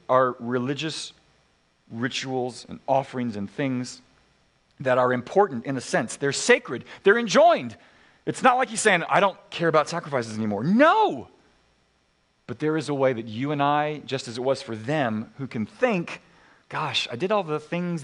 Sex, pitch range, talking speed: male, 120-165 Hz, 175 wpm